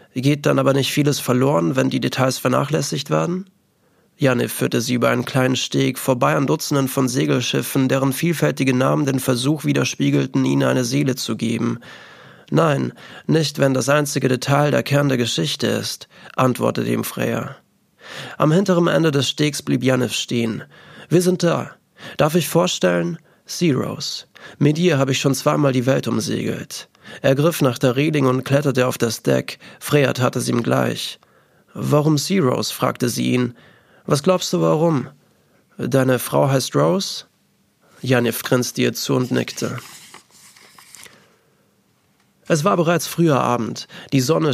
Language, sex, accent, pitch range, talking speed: German, male, German, 125-150 Hz, 155 wpm